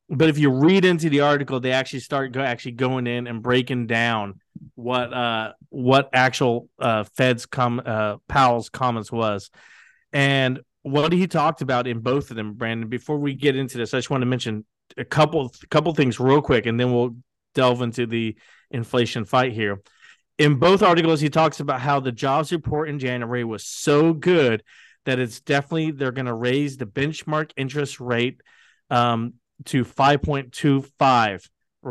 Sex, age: male, 30-49